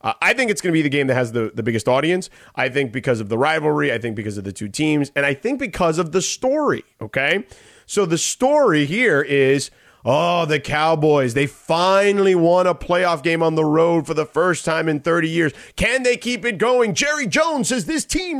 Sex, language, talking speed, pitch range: male, English, 225 wpm, 140-205 Hz